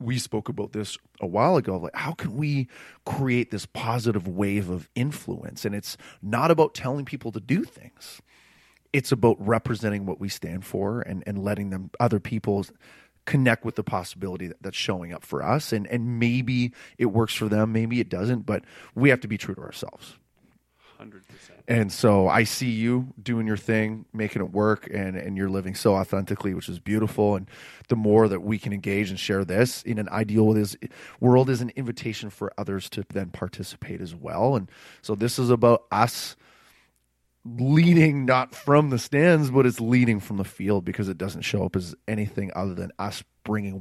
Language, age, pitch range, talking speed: English, 30-49, 100-120 Hz, 190 wpm